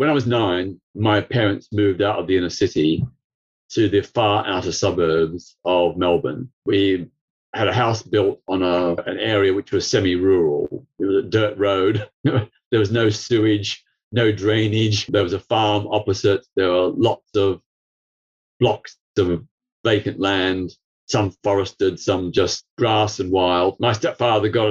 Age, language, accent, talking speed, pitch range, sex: 40-59, English, British, 155 wpm, 95-120 Hz, male